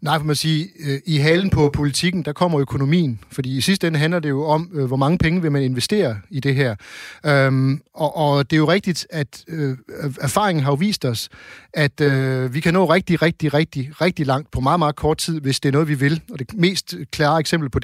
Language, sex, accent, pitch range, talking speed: Danish, male, native, 140-170 Hz, 220 wpm